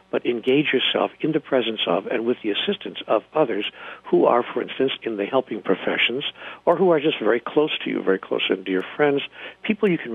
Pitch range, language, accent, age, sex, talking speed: 110-140 Hz, English, American, 60-79, male, 220 wpm